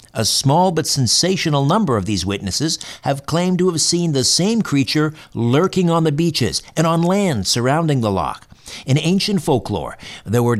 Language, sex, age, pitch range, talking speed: English, male, 60-79, 110-155 Hz, 175 wpm